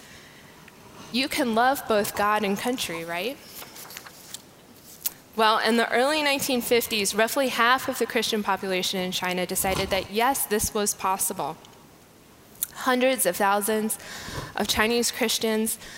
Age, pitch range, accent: 20-39, 190-230 Hz, American